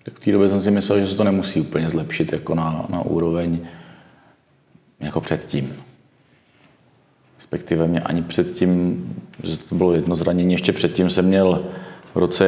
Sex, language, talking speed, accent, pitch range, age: male, Czech, 165 wpm, native, 85-95 Hz, 40-59